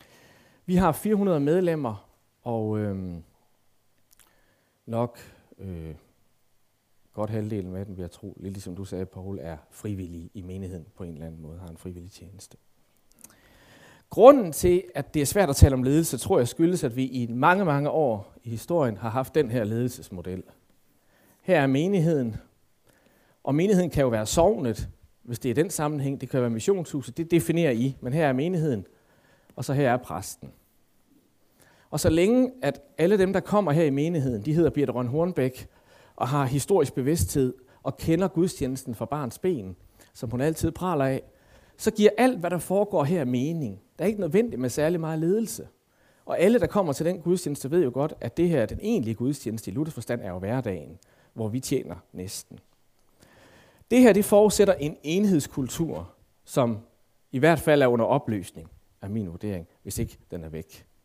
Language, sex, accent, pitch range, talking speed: Danish, male, native, 105-165 Hz, 180 wpm